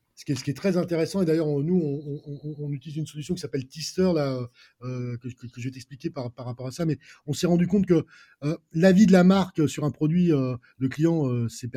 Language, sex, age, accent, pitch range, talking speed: French, male, 20-39, French, 135-175 Hz, 270 wpm